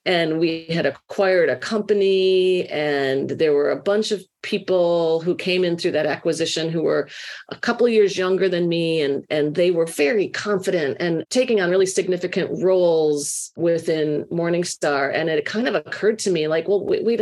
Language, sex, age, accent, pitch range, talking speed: English, female, 40-59, American, 155-200 Hz, 185 wpm